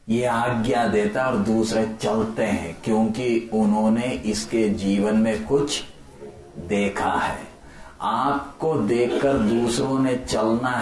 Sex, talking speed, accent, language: male, 115 wpm, Indian, English